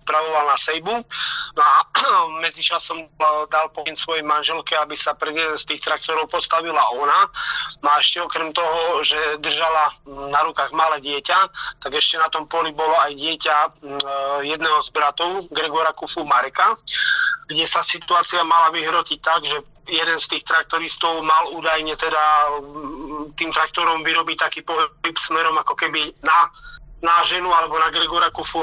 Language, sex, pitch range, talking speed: Slovak, male, 150-165 Hz, 150 wpm